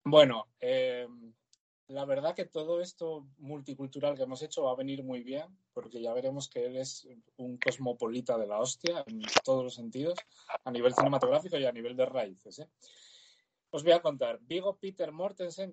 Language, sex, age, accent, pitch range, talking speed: Spanish, male, 20-39, Spanish, 130-190 Hz, 175 wpm